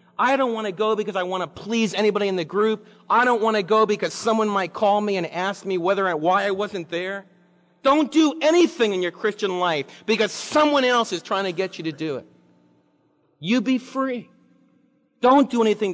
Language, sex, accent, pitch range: English, male, American, 175-230 Hz